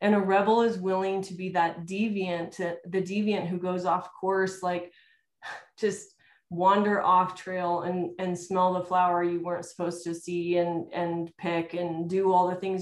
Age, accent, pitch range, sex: 30-49, American, 175-200 Hz, female